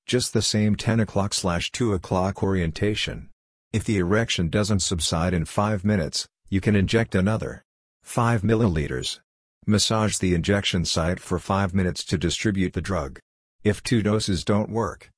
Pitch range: 90-105 Hz